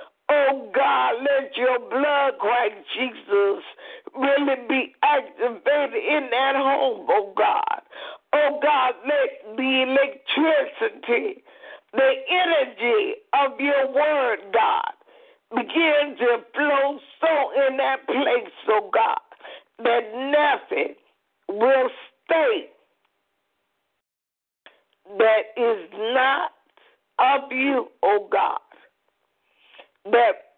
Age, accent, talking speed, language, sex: 50-69, American, 90 wpm, English, female